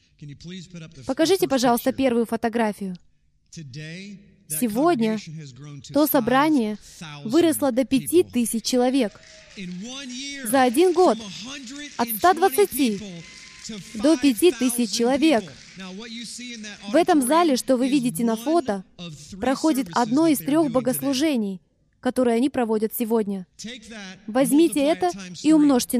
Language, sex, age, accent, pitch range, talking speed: Russian, female, 20-39, native, 215-300 Hz, 95 wpm